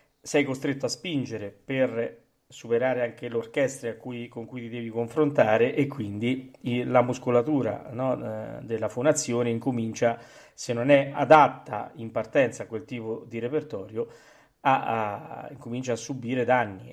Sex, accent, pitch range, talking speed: male, native, 115-140 Hz, 140 wpm